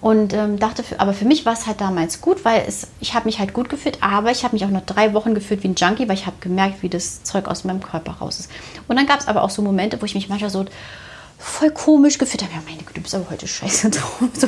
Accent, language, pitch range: German, German, 195-250 Hz